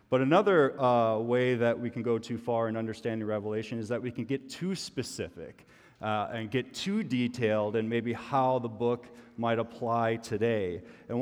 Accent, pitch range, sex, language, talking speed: American, 115-135 Hz, male, English, 180 wpm